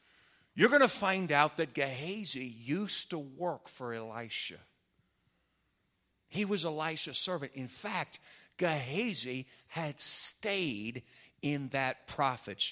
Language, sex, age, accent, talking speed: English, male, 50-69, American, 115 wpm